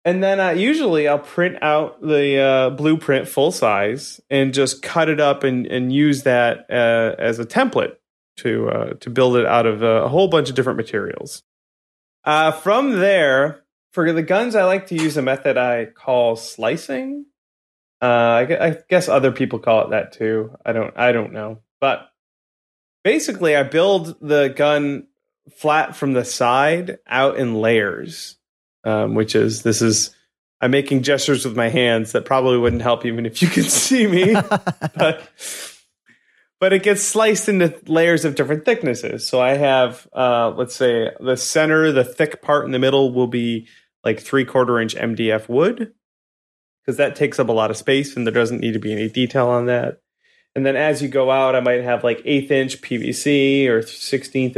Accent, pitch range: American, 120-155 Hz